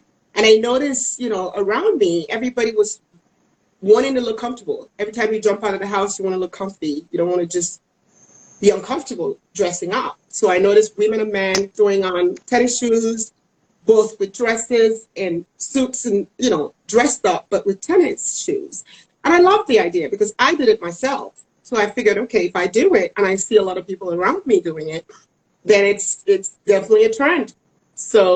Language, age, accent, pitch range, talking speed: English, 40-59, American, 185-250 Hz, 200 wpm